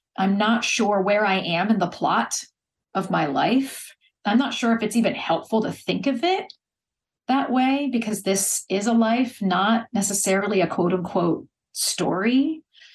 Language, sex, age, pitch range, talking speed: English, female, 40-59, 190-240 Hz, 165 wpm